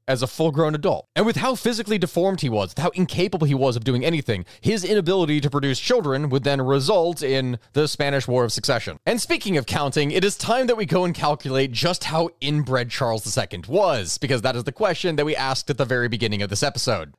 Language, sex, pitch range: English, male, 120-170 Hz